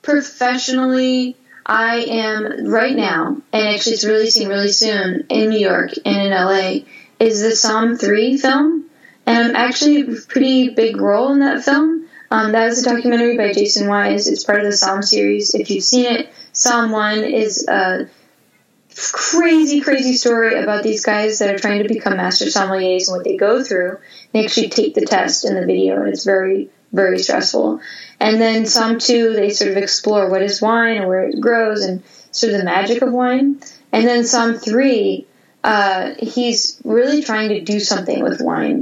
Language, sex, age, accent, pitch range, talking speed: English, female, 10-29, American, 200-245 Hz, 185 wpm